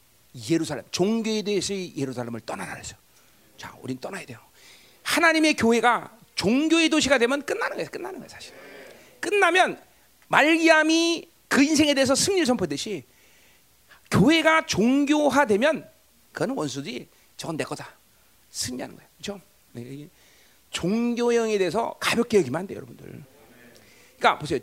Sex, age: male, 40-59